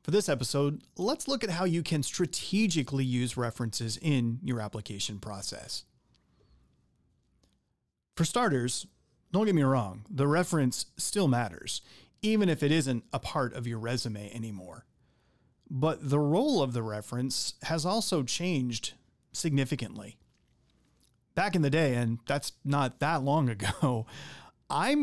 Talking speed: 135 wpm